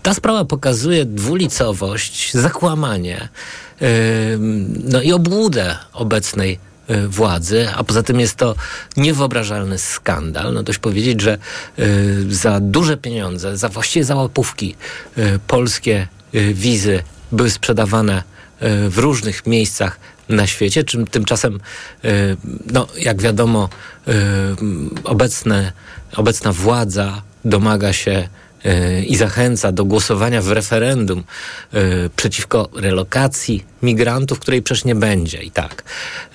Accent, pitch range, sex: native, 95-120 Hz, male